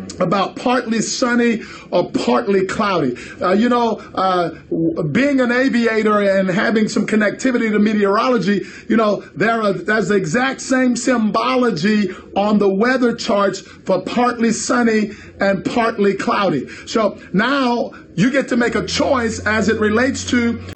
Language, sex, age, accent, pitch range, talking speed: English, male, 50-69, American, 210-250 Hz, 145 wpm